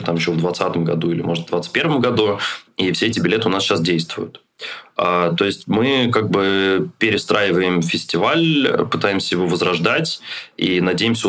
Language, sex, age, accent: Russian, male, 20-39, native